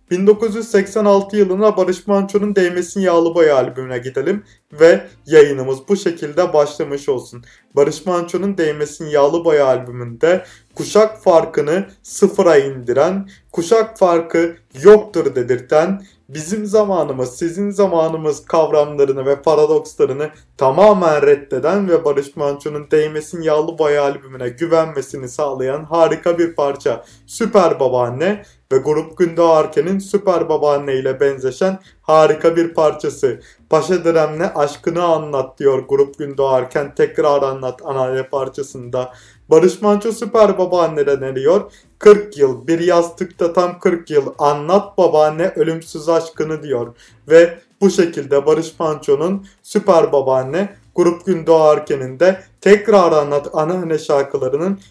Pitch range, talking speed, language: 145-195 Hz, 115 wpm, Turkish